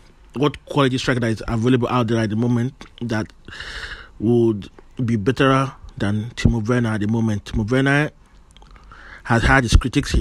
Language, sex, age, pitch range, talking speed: English, male, 30-49, 105-130 Hz, 165 wpm